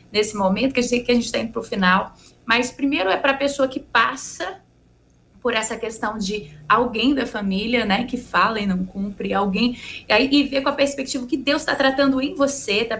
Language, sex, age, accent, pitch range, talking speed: Portuguese, female, 20-39, Brazilian, 240-295 Hz, 210 wpm